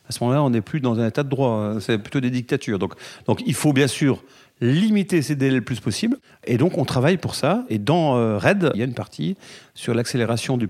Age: 40-59